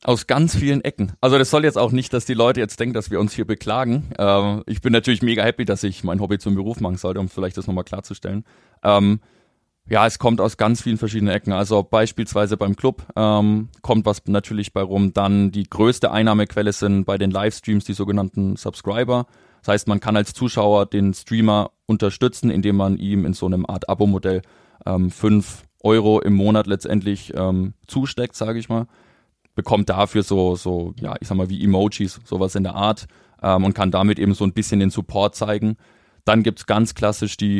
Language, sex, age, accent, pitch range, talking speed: German, male, 20-39, German, 100-110 Hz, 205 wpm